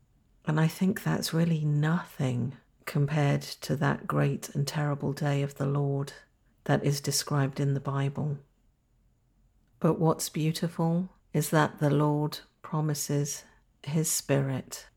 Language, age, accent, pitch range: English, 50-69, British, 135-150 Hz